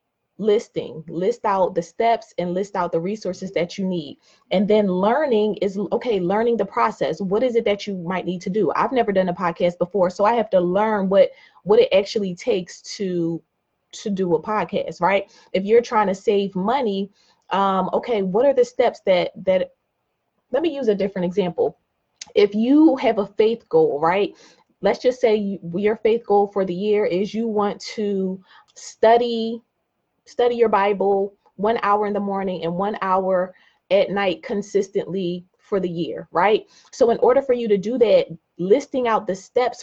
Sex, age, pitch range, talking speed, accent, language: female, 20-39, 185-235 Hz, 185 wpm, American, English